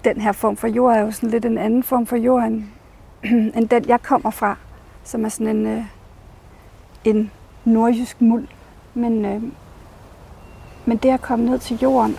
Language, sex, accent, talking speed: Danish, female, native, 175 wpm